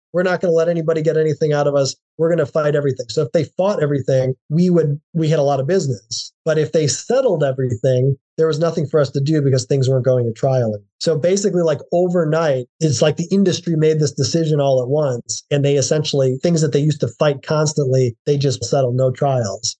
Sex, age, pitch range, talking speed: male, 30-49, 140-170 Hz, 230 wpm